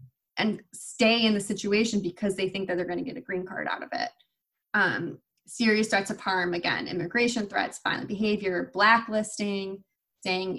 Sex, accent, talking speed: female, American, 175 wpm